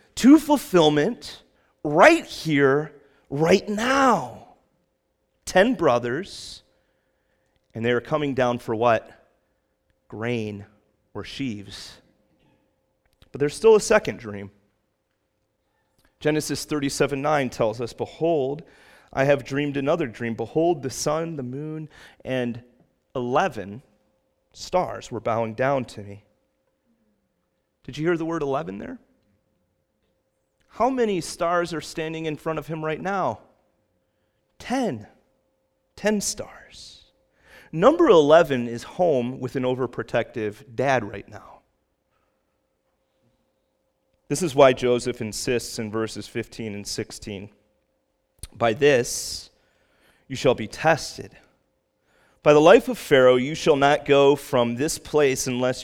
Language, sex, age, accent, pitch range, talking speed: English, male, 30-49, American, 115-160 Hz, 115 wpm